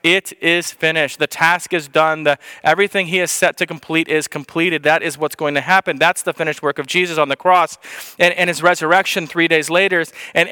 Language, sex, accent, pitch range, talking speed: English, male, American, 170-205 Hz, 215 wpm